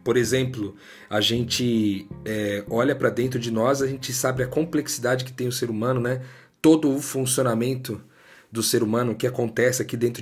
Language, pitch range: Portuguese, 115-140 Hz